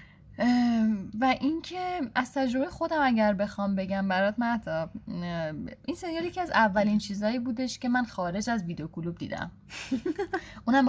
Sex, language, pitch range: female, English, 185-245 Hz